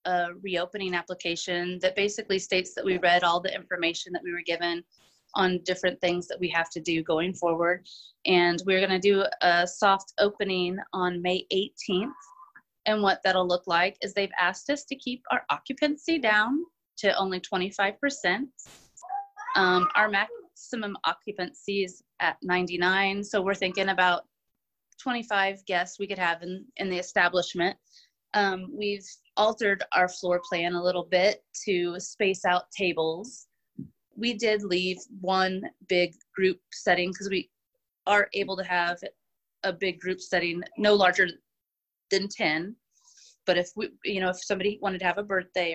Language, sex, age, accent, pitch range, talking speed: English, female, 30-49, American, 175-205 Hz, 155 wpm